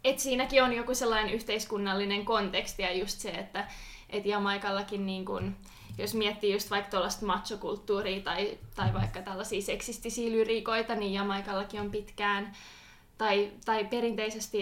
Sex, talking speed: female, 140 wpm